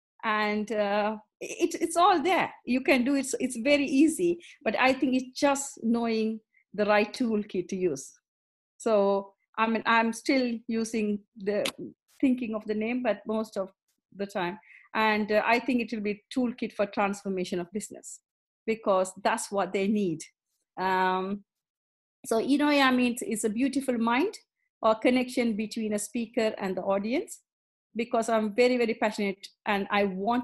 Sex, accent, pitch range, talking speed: female, Indian, 205-255 Hz, 165 wpm